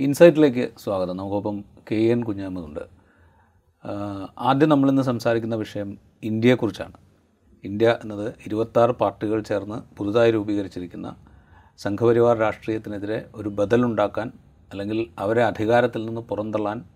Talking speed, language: 100 wpm, Malayalam